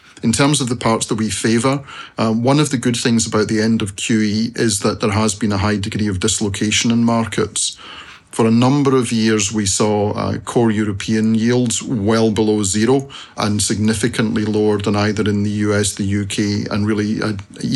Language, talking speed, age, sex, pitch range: English, 195 wpm, 40-59, male, 105-115 Hz